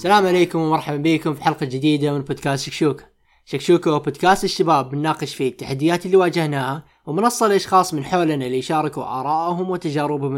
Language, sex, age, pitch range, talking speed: Arabic, male, 20-39, 130-160 Hz, 155 wpm